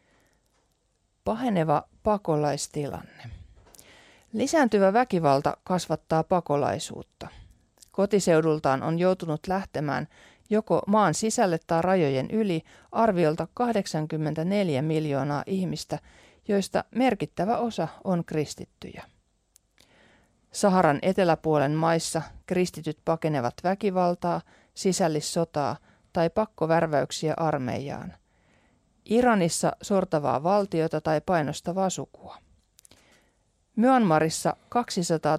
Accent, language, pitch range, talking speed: native, Finnish, 155-195 Hz, 75 wpm